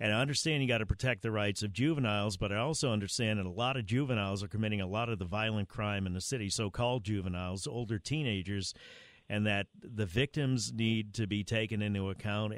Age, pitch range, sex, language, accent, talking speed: 50-69, 105-130 Hz, male, English, American, 220 wpm